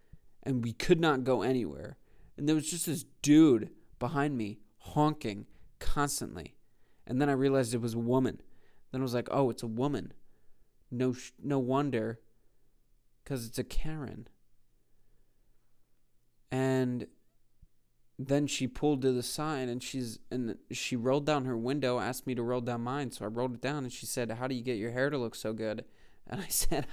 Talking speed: 185 wpm